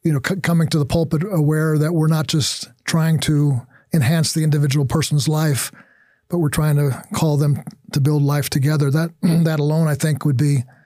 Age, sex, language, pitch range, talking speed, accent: 50-69, male, English, 150-175 Hz, 200 wpm, American